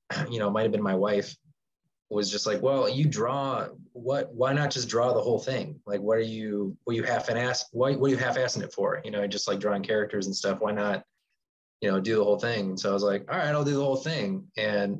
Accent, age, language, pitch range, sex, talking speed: American, 20-39, English, 100-125 Hz, male, 260 wpm